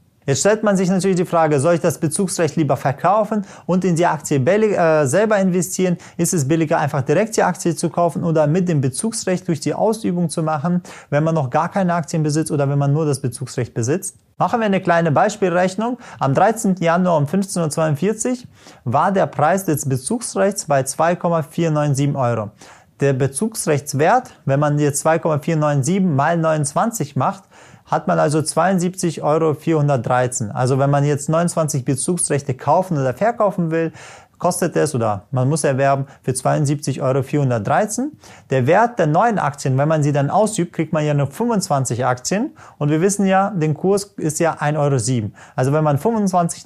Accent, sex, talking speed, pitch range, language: German, male, 175 wpm, 140-180 Hz, German